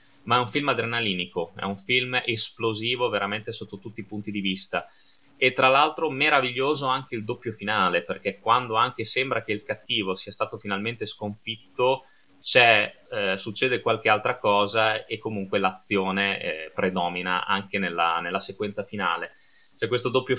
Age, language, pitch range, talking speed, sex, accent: 20-39, Italian, 100-125 Hz, 160 wpm, male, native